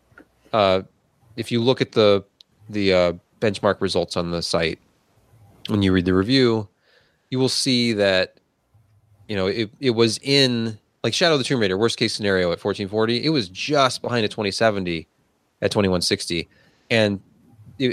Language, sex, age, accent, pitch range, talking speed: English, male, 30-49, American, 95-120 Hz, 155 wpm